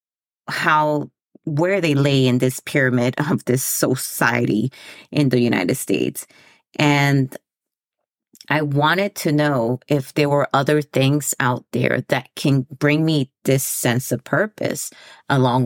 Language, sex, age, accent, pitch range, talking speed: English, female, 30-49, American, 130-160 Hz, 135 wpm